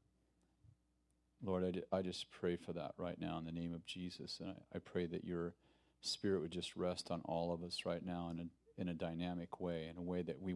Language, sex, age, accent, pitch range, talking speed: English, male, 40-59, American, 80-105 Hz, 225 wpm